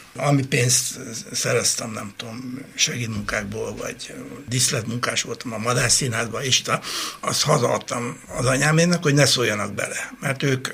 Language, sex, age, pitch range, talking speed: Hungarian, male, 60-79, 115-140 Hz, 130 wpm